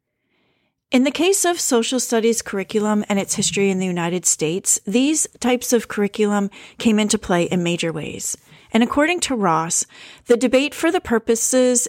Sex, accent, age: female, American, 40-59